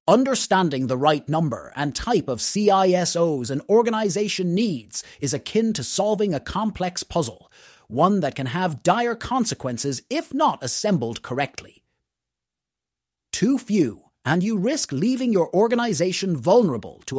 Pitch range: 140-220 Hz